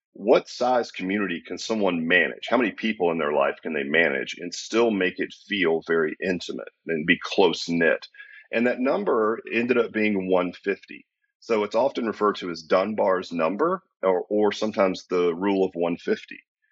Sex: male